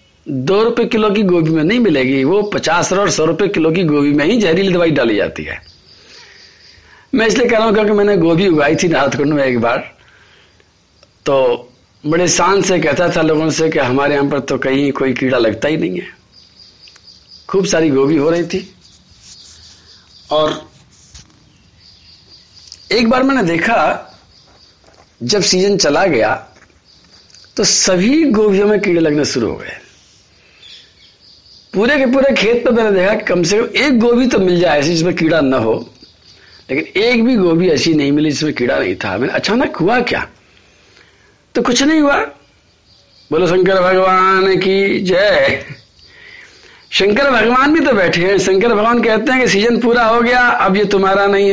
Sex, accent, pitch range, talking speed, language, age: male, native, 140-220 Hz, 170 wpm, Hindi, 50-69